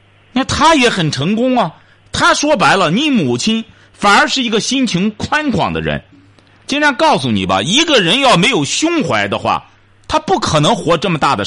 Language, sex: Chinese, male